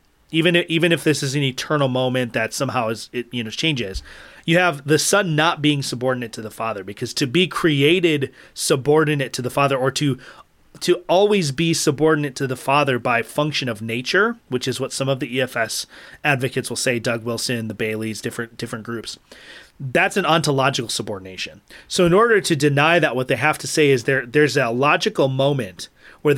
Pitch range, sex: 125-155 Hz, male